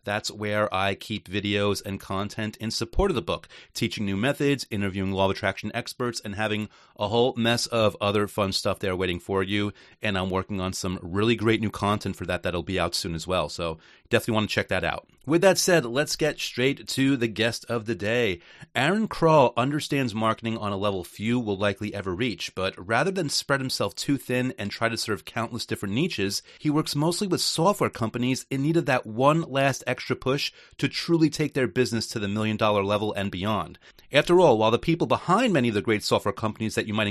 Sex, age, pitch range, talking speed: male, 30-49, 105-150 Hz, 220 wpm